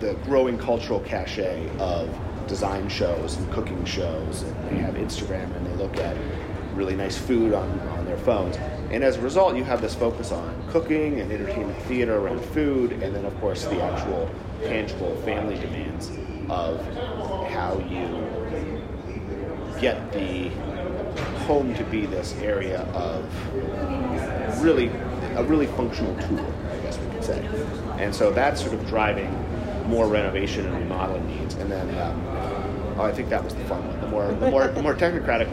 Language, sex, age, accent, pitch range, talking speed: English, male, 30-49, American, 85-105 Hz, 165 wpm